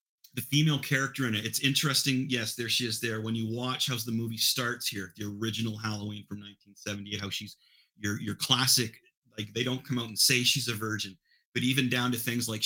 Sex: male